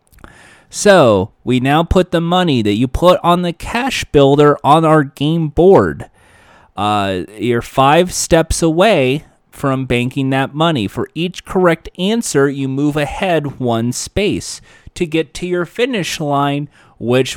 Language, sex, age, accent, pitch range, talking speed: English, male, 30-49, American, 120-170 Hz, 145 wpm